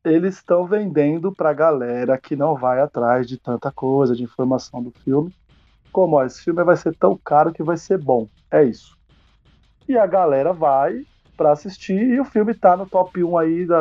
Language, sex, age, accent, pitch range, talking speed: Portuguese, male, 20-39, Brazilian, 135-180 Hz, 195 wpm